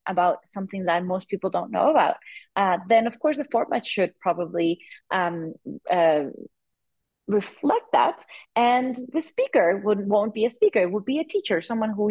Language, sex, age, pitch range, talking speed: English, female, 30-49, 180-220 Hz, 175 wpm